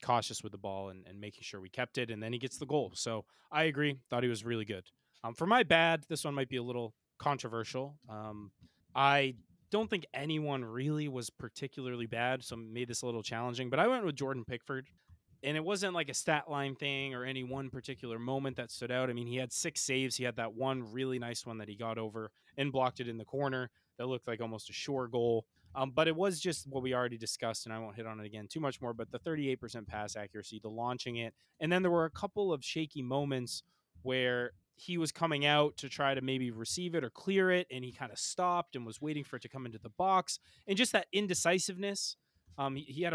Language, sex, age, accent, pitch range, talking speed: English, male, 20-39, American, 115-150 Hz, 245 wpm